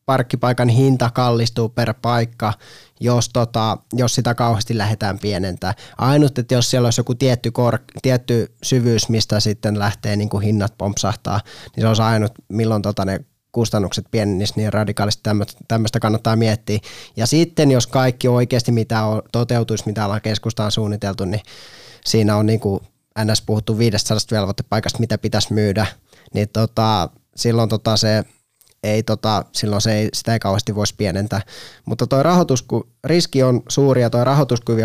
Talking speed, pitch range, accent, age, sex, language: 155 wpm, 105-125 Hz, native, 20-39, male, Finnish